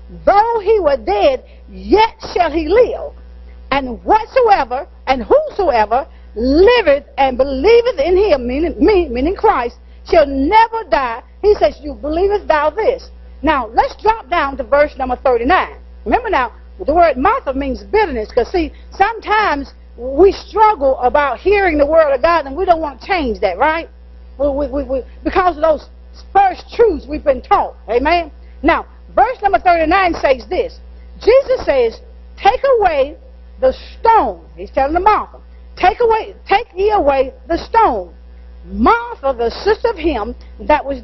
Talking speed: 150 wpm